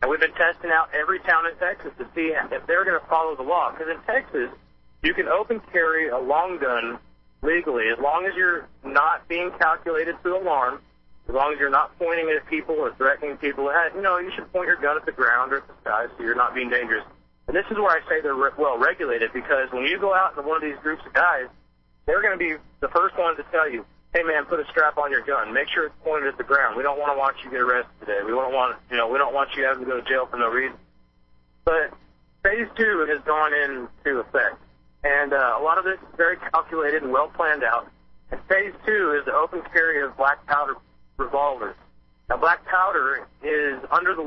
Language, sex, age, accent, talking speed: English, male, 40-59, American, 245 wpm